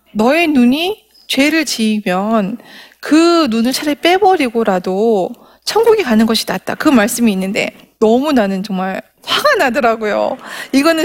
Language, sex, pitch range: Korean, female, 205-270 Hz